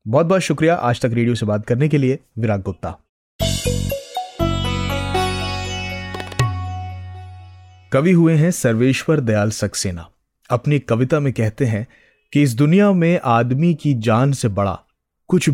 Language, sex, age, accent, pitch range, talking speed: Hindi, male, 30-49, native, 105-150 Hz, 130 wpm